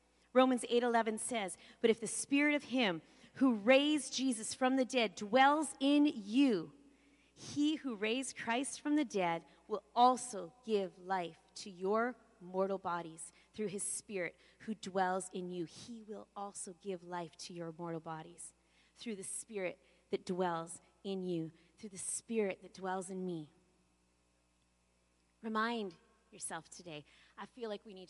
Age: 30-49